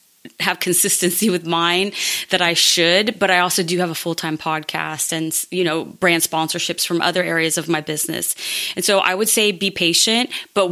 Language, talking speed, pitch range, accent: English, 190 wpm, 170-190 Hz, American